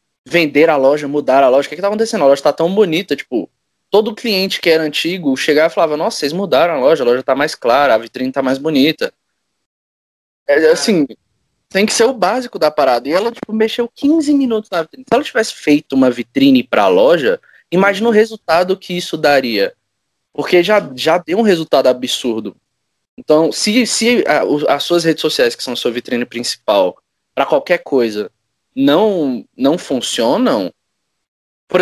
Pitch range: 150-235 Hz